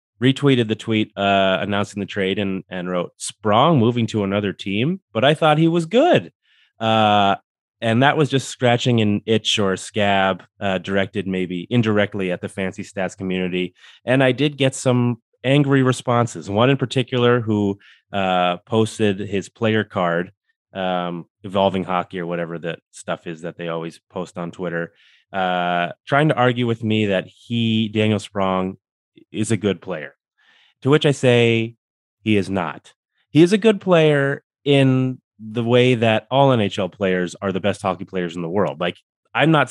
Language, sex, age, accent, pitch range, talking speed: English, male, 30-49, American, 95-130 Hz, 170 wpm